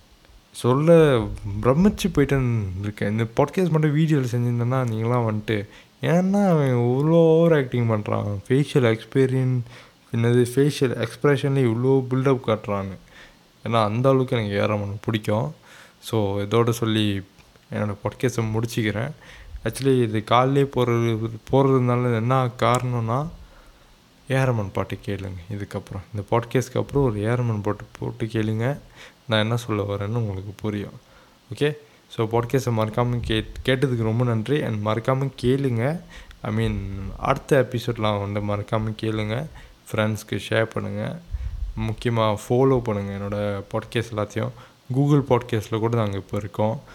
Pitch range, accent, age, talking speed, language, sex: 105-130 Hz, native, 20-39, 120 wpm, Tamil, male